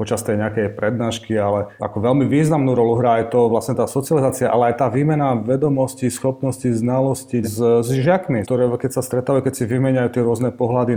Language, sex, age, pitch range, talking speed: Slovak, male, 30-49, 110-125 Hz, 185 wpm